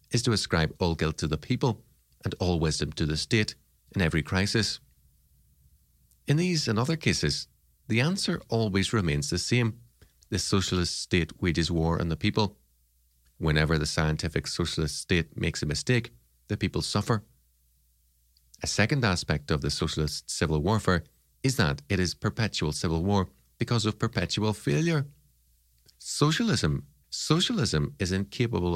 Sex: male